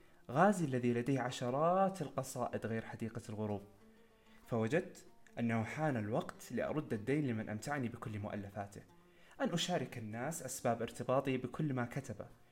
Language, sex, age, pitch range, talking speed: Arabic, male, 20-39, 115-160 Hz, 125 wpm